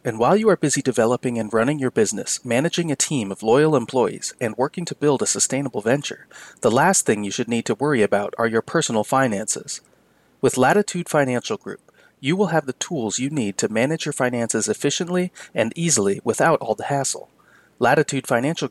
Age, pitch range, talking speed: 30-49, 115-150 Hz, 190 wpm